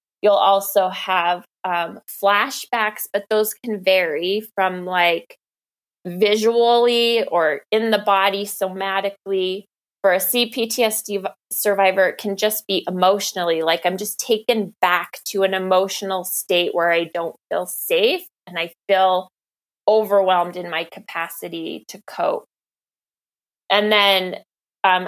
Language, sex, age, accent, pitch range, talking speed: English, female, 20-39, American, 175-205 Hz, 125 wpm